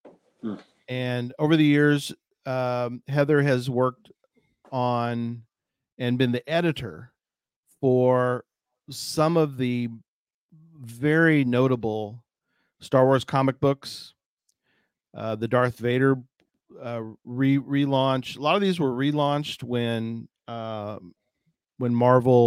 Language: English